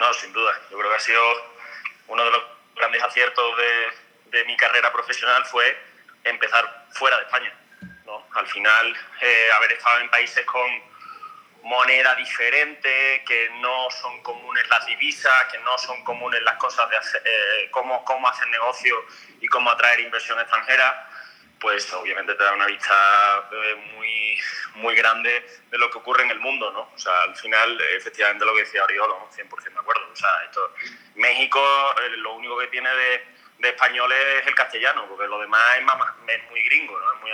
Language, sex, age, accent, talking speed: Spanish, male, 30-49, Spanish, 175 wpm